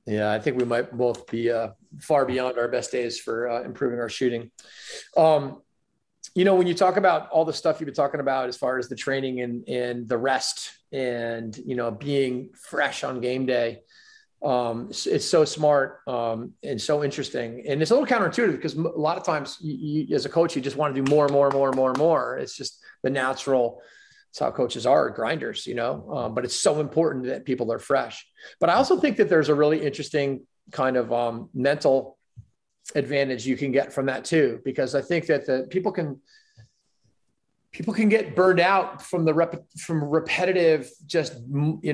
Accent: American